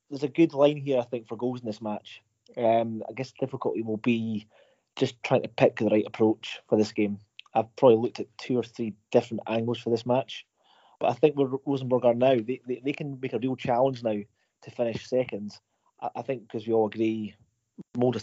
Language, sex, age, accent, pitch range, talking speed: English, male, 30-49, British, 115-130 Hz, 225 wpm